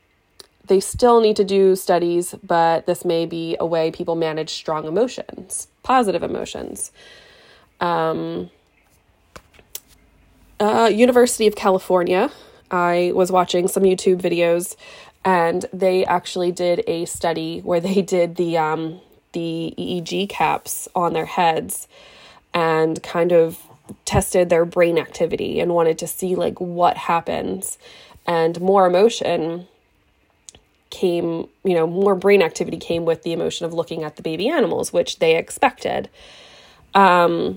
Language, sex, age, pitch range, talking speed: English, female, 20-39, 165-195 Hz, 135 wpm